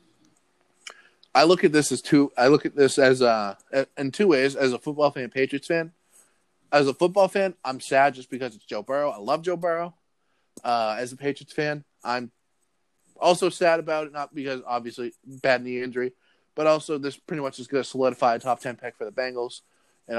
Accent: American